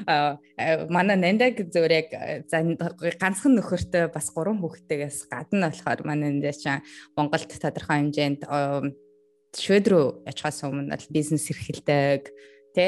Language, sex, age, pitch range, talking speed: English, female, 20-39, 150-200 Hz, 85 wpm